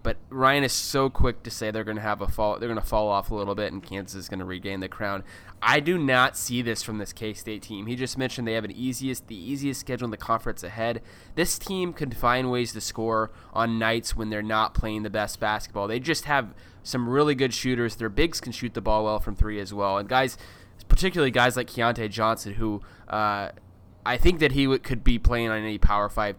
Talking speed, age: 245 wpm, 20-39